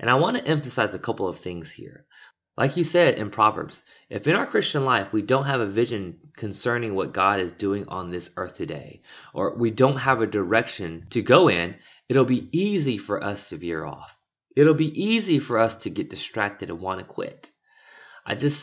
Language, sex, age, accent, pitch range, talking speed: English, male, 20-39, American, 100-140 Hz, 210 wpm